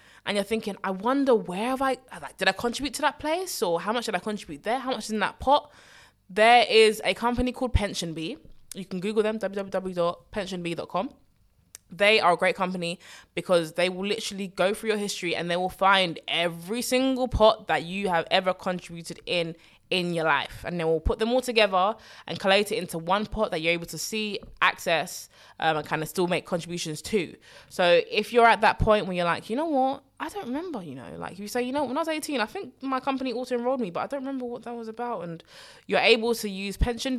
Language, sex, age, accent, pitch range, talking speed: English, female, 20-39, British, 170-225 Hz, 230 wpm